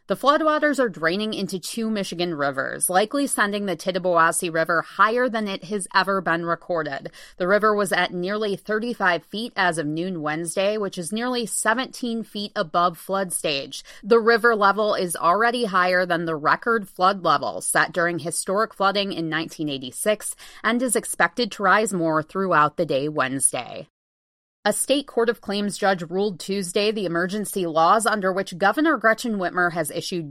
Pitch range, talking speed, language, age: 175-220 Hz, 165 wpm, English, 30-49